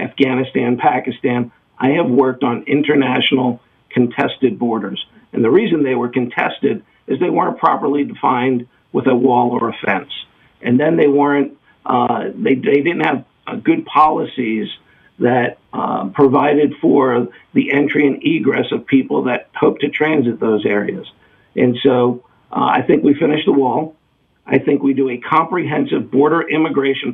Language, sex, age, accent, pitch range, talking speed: English, male, 50-69, American, 120-140 Hz, 155 wpm